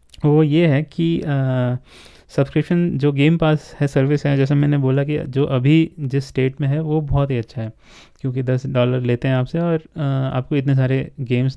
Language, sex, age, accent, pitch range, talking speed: Hindi, male, 20-39, native, 125-145 Hz, 195 wpm